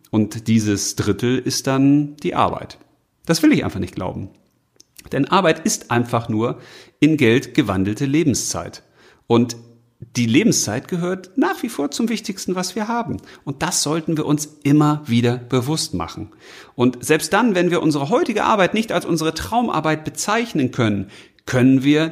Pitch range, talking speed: 120-180 Hz, 160 wpm